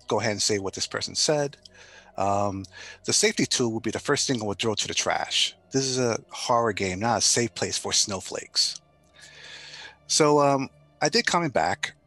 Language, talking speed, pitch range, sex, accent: English, 195 wpm, 105-135 Hz, male, American